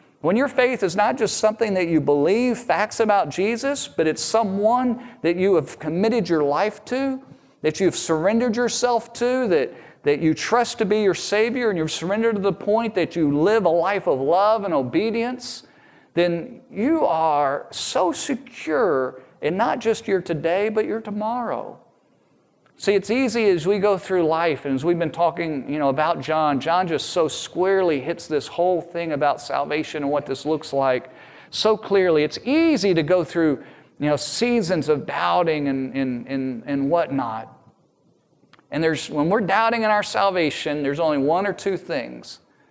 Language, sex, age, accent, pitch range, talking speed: English, male, 40-59, American, 155-220 Hz, 180 wpm